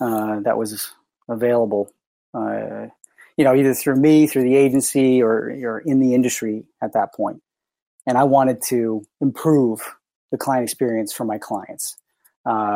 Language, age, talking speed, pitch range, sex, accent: English, 30-49, 150 wpm, 110-130 Hz, male, American